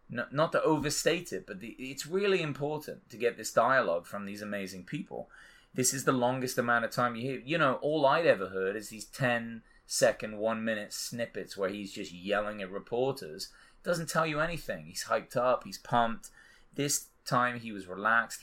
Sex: male